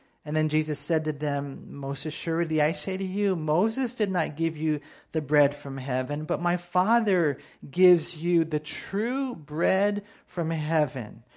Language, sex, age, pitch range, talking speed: English, male, 40-59, 140-180 Hz, 165 wpm